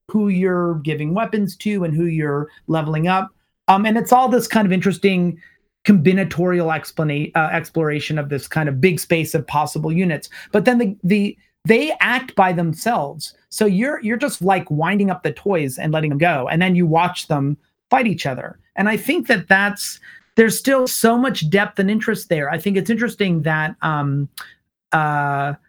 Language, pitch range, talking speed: English, 160-205 Hz, 185 wpm